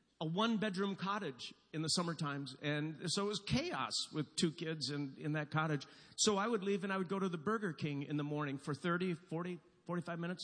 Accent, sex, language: American, male, English